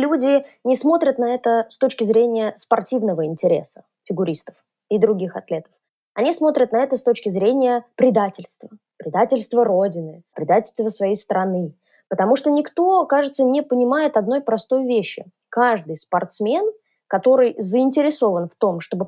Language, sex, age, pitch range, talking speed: Russian, female, 20-39, 195-260 Hz, 135 wpm